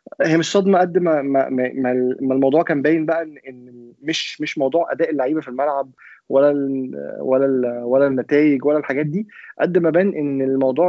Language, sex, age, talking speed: Arabic, male, 20-39, 175 wpm